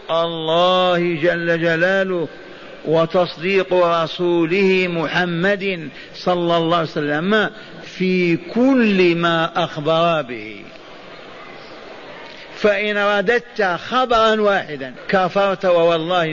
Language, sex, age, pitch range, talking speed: Arabic, male, 50-69, 170-200 Hz, 75 wpm